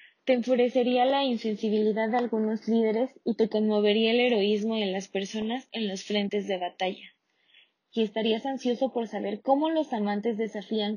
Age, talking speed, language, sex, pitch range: 20-39, 160 wpm, Spanish, female, 205-240 Hz